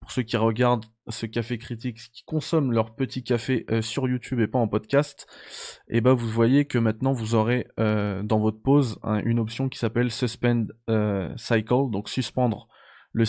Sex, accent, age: male, French, 20-39